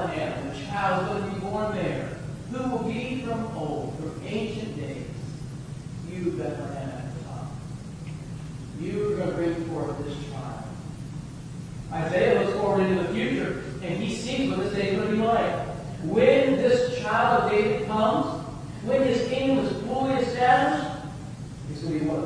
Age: 40-59